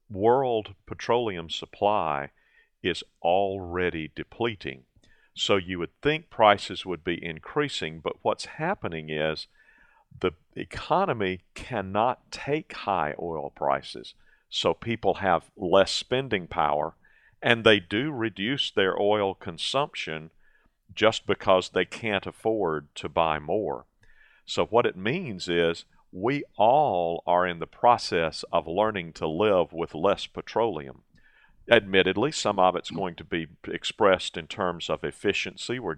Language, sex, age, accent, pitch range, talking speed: English, male, 50-69, American, 85-110 Hz, 130 wpm